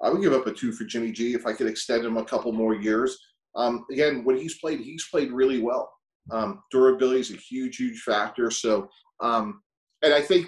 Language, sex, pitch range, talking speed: English, male, 110-130 Hz, 225 wpm